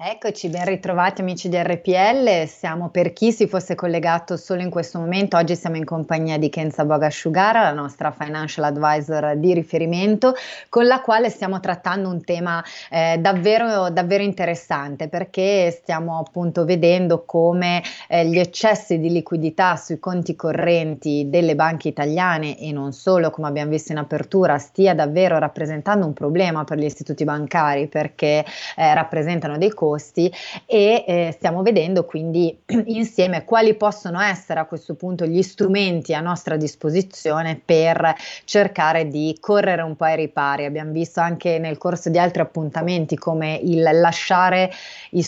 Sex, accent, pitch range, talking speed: female, native, 155-180 Hz, 150 wpm